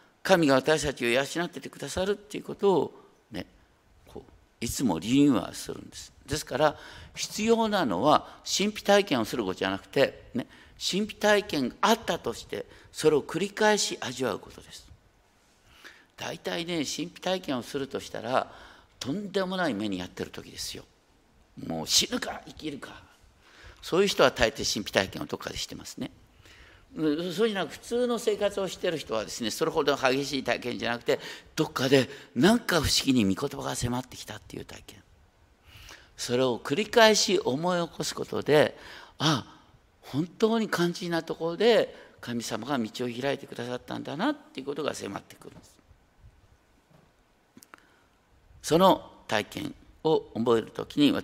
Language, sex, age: Japanese, male, 50-69